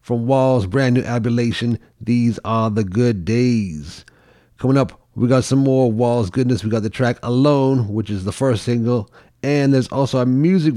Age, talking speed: 30-49, 185 wpm